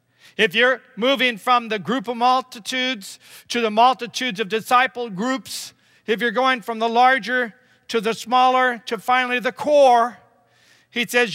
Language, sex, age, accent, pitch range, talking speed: English, male, 50-69, American, 220-260 Hz, 155 wpm